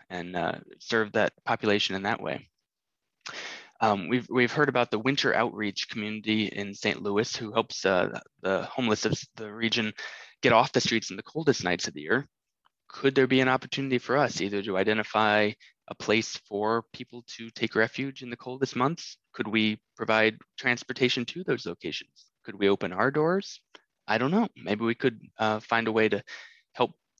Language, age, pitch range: English, 20-39, 105-125 Hz